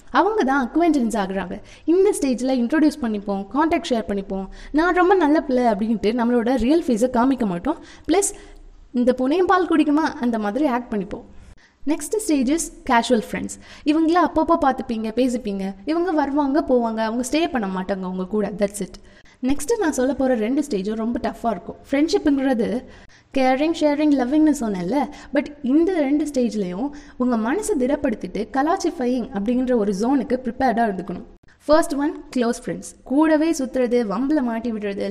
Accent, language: native, Tamil